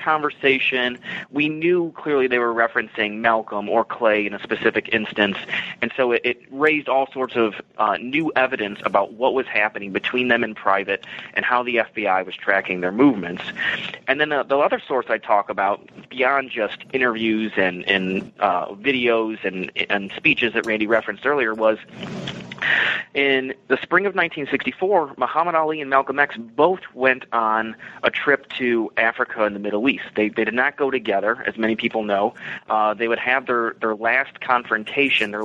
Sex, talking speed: male, 180 wpm